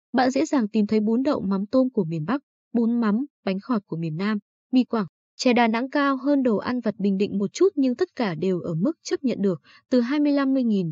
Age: 20-39